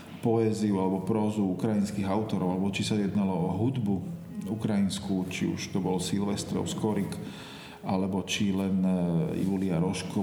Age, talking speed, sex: 40-59, 135 wpm, male